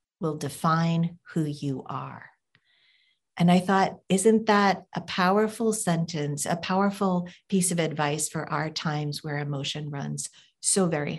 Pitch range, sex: 160-200 Hz, female